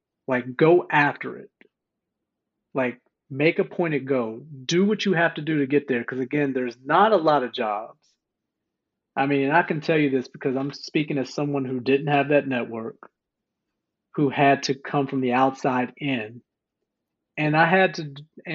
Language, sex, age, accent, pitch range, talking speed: English, male, 40-59, American, 130-150 Hz, 185 wpm